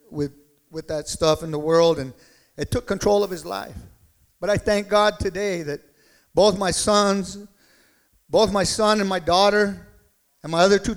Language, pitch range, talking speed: English, 190-235 Hz, 180 wpm